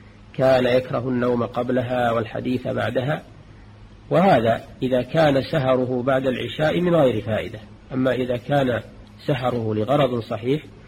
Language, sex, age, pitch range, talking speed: Arabic, male, 40-59, 105-135 Hz, 115 wpm